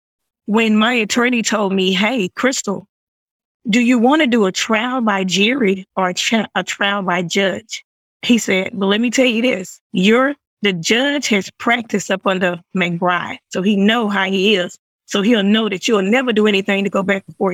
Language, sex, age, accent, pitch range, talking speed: English, female, 20-39, American, 190-225 Hz, 190 wpm